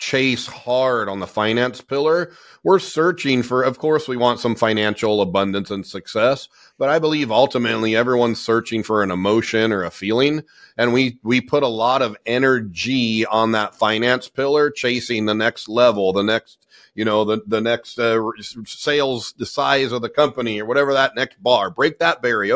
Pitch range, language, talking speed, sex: 110-135 Hz, English, 180 wpm, male